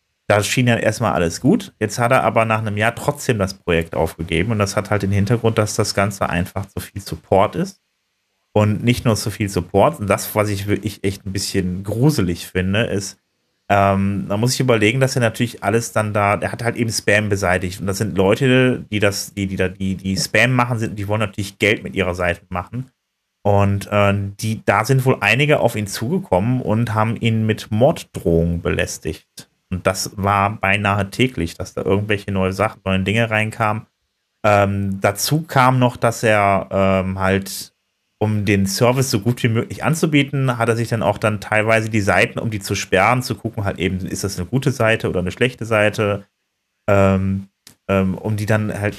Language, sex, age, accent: German, male, 30-49, German